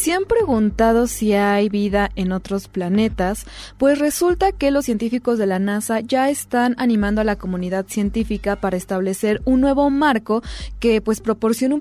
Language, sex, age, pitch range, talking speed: Spanish, female, 20-39, 200-235 Hz, 165 wpm